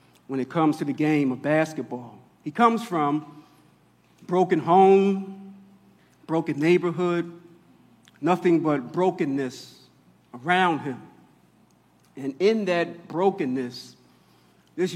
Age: 50-69